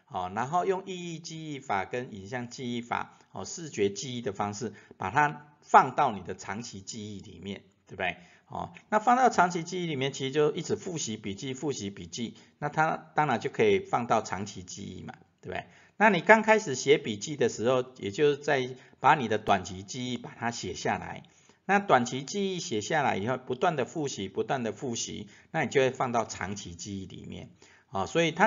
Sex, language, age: male, Chinese, 50-69